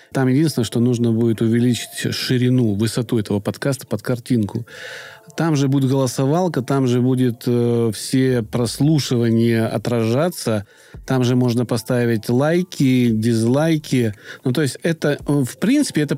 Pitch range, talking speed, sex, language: 125-160 Hz, 135 wpm, male, Russian